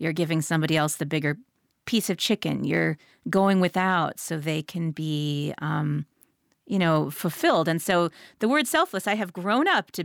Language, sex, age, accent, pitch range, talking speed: English, female, 30-49, American, 175-245 Hz, 180 wpm